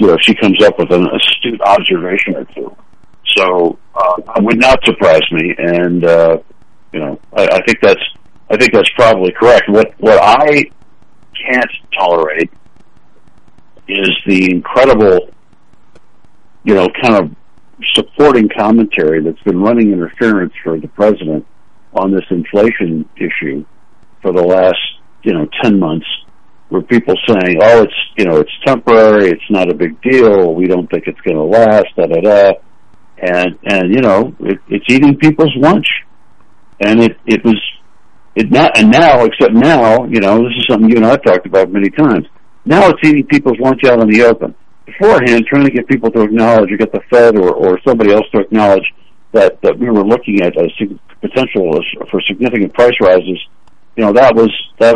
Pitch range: 90-120 Hz